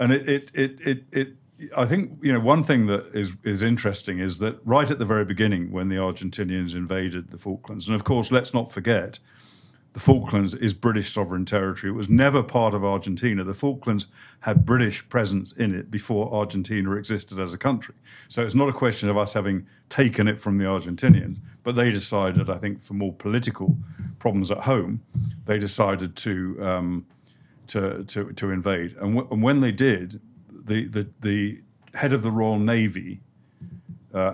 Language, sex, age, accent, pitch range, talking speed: English, male, 50-69, British, 95-120 Hz, 185 wpm